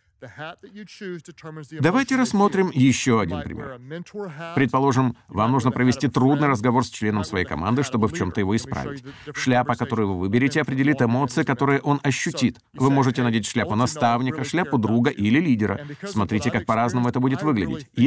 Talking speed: 145 wpm